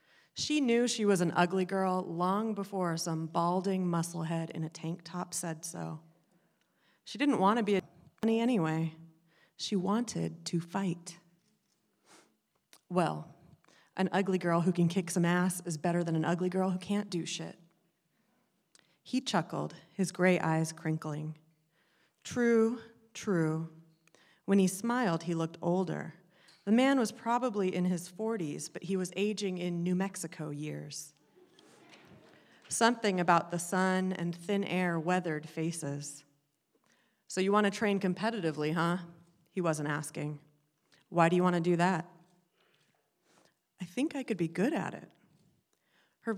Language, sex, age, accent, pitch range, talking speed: English, female, 30-49, American, 165-195 Hz, 145 wpm